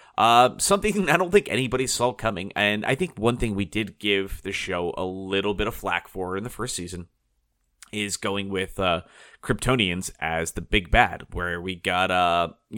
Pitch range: 95-115 Hz